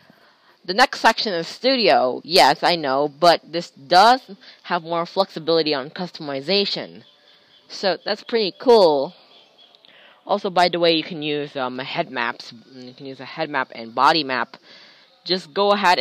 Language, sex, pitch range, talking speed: English, female, 145-185 Hz, 155 wpm